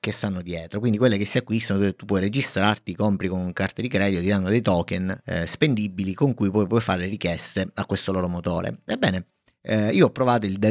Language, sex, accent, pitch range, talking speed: Italian, male, native, 95-110 Hz, 230 wpm